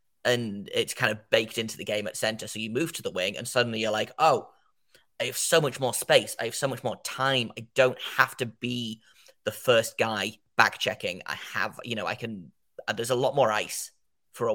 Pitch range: 110-130 Hz